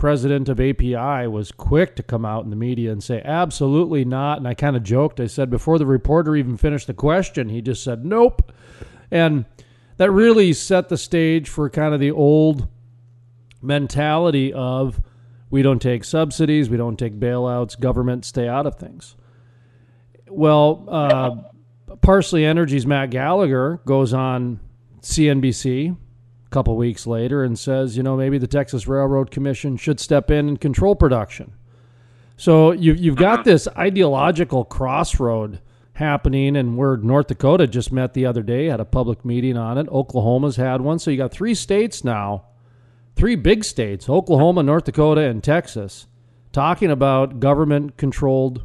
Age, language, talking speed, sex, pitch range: 40-59, English, 160 wpm, male, 120-155 Hz